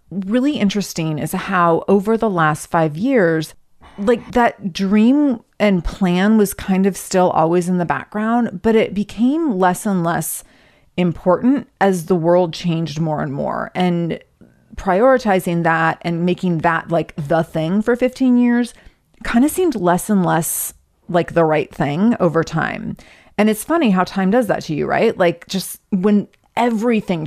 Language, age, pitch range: English, 30-49, 170-230 Hz